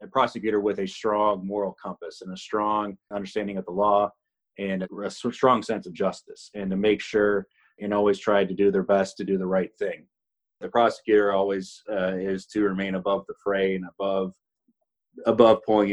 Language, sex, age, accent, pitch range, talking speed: English, male, 30-49, American, 95-105 Hz, 190 wpm